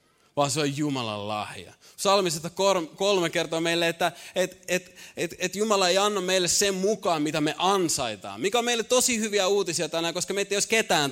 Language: Finnish